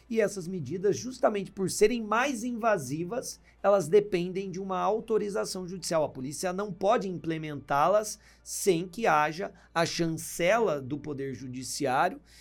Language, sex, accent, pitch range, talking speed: Portuguese, male, Brazilian, 145-200 Hz, 130 wpm